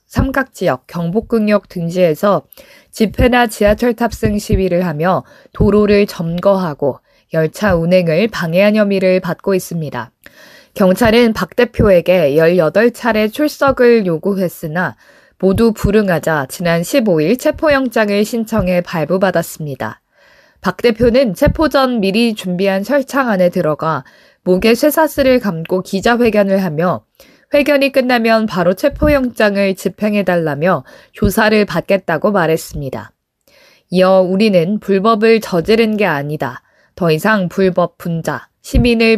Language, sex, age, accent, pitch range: Korean, female, 20-39, native, 170-230 Hz